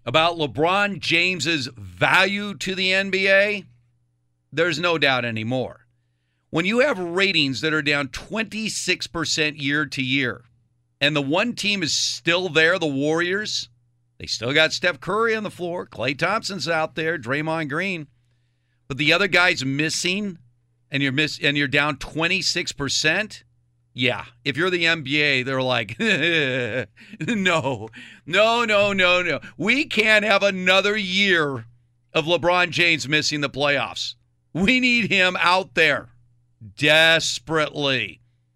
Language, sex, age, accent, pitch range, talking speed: English, male, 50-69, American, 120-175 Hz, 135 wpm